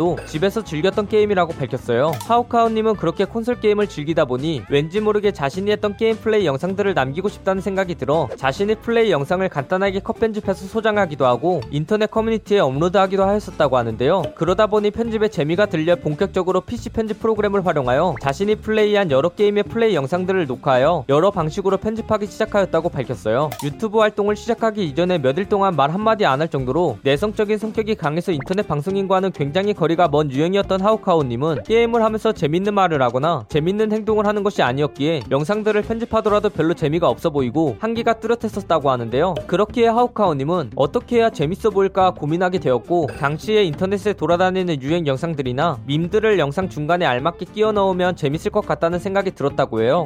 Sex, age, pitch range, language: male, 20-39, 155-210 Hz, Korean